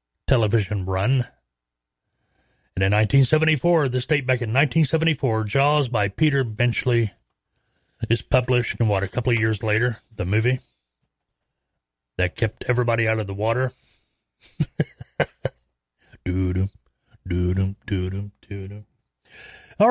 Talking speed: 100 wpm